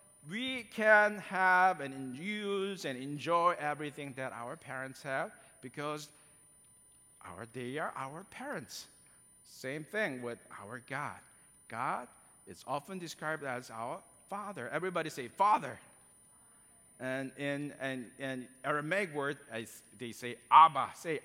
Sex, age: male, 50-69